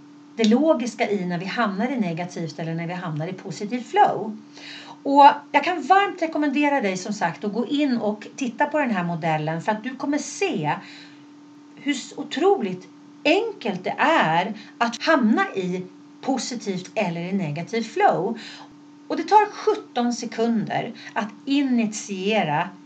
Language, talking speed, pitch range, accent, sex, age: Swedish, 145 wpm, 190-295 Hz, native, female, 40-59